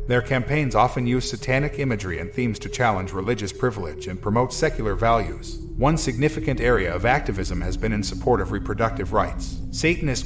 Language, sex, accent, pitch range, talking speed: English, male, American, 100-130 Hz, 170 wpm